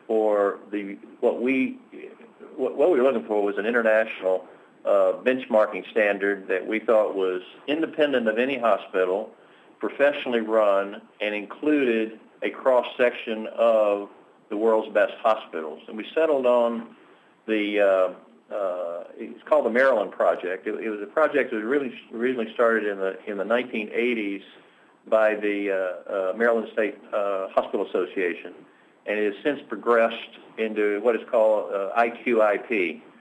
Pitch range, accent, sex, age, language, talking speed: 100-120 Hz, American, male, 50-69, English, 150 wpm